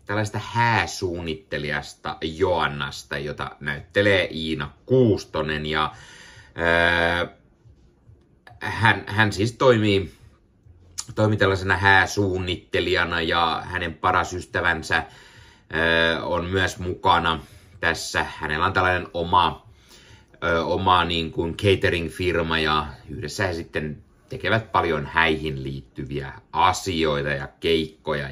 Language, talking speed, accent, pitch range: Finnish, 90 wpm, native, 80-100 Hz